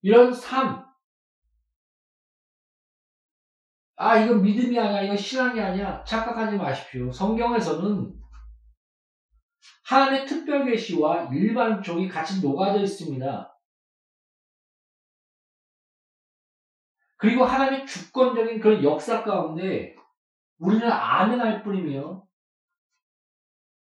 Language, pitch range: Korean, 150-230 Hz